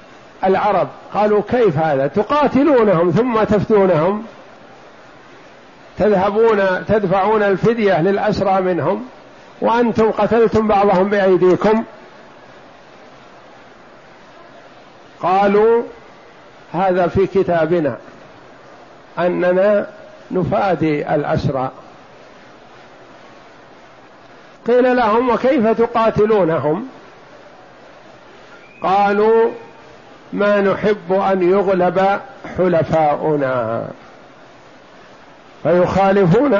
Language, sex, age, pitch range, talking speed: Arabic, male, 50-69, 175-215 Hz, 55 wpm